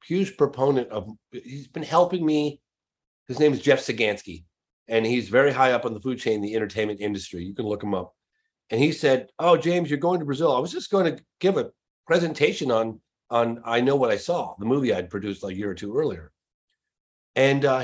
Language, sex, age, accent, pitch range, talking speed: English, male, 40-59, American, 105-150 Hz, 215 wpm